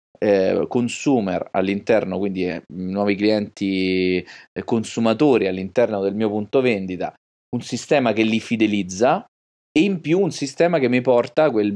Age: 30-49